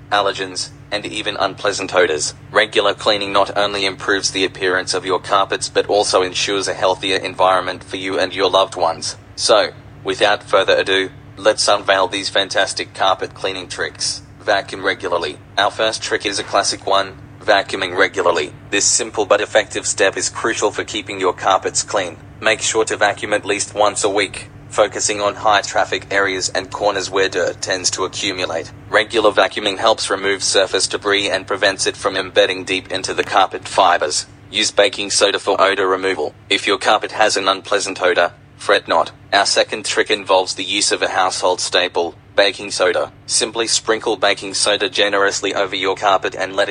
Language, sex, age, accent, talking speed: English, male, 20-39, Australian, 175 wpm